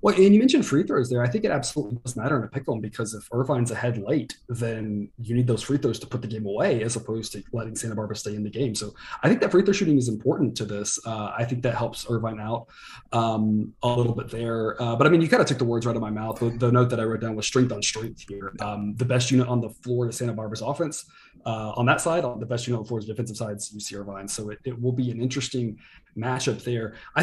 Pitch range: 110-135 Hz